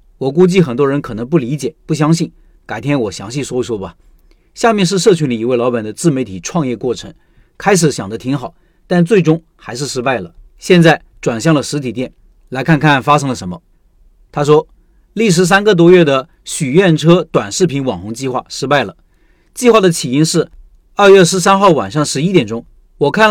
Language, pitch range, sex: Chinese, 135-185 Hz, male